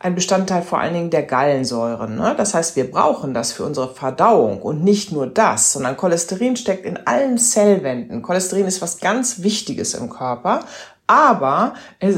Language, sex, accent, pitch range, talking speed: German, female, German, 140-205 Hz, 170 wpm